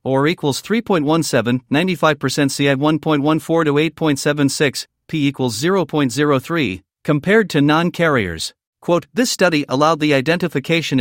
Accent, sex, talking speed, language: American, male, 110 wpm, English